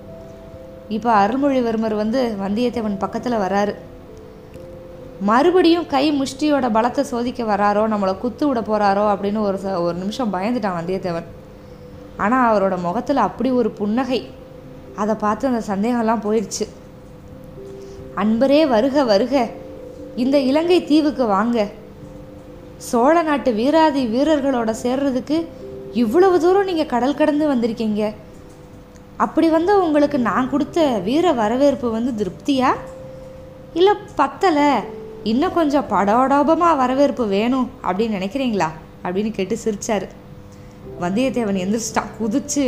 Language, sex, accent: Tamil, female, native